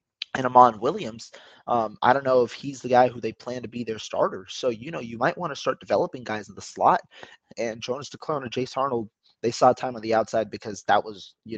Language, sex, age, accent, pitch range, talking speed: English, male, 20-39, American, 110-125 Hz, 245 wpm